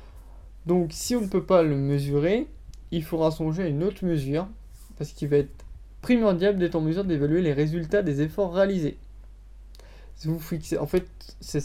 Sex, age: male, 20-39